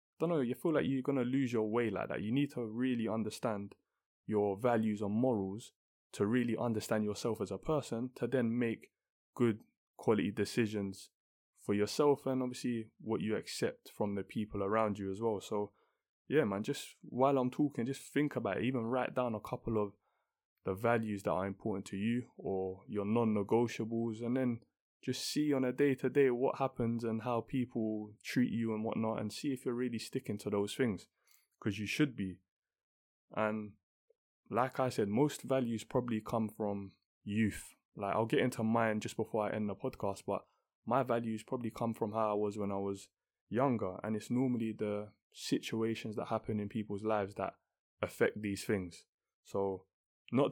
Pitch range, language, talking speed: 105-125 Hz, English, 185 wpm